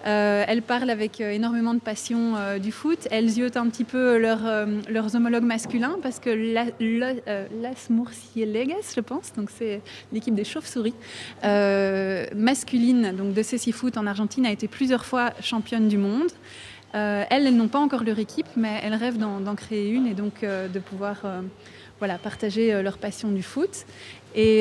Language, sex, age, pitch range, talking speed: French, female, 20-39, 210-240 Hz, 195 wpm